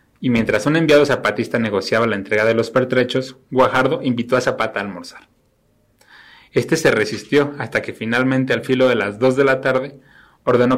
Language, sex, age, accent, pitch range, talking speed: Spanish, male, 30-49, Mexican, 110-130 Hz, 180 wpm